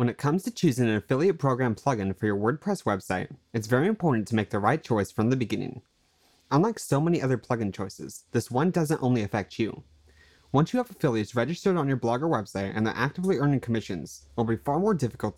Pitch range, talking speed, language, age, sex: 105-145 Hz, 220 wpm, English, 20-39, male